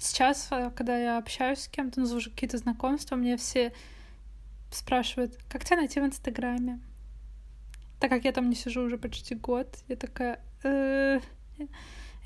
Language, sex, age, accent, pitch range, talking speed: Russian, female, 20-39, native, 235-260 Hz, 135 wpm